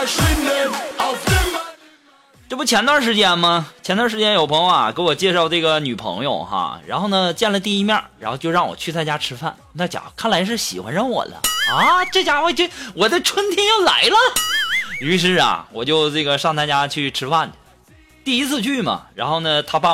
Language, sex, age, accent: Chinese, male, 20-39, native